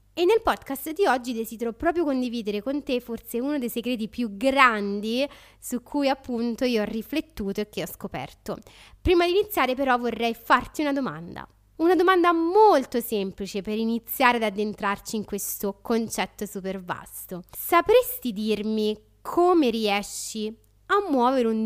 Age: 20-39